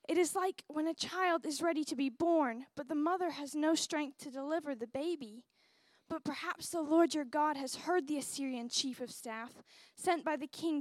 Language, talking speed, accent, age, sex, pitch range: English, 210 wpm, American, 10-29, female, 245-315 Hz